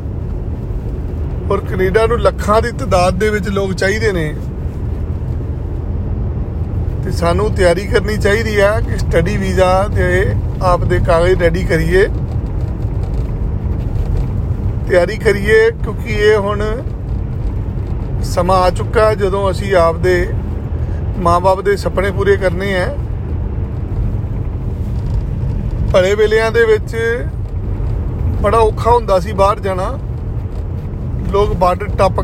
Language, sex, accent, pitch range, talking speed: Hindi, male, native, 95-115 Hz, 85 wpm